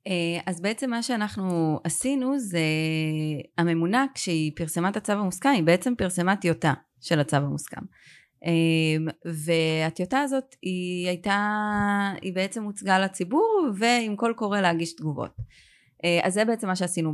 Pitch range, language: 155-195 Hz, Hebrew